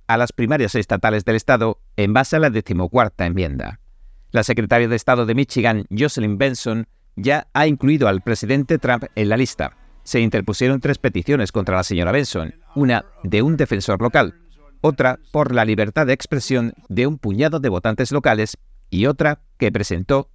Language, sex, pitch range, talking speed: Spanish, male, 105-140 Hz, 170 wpm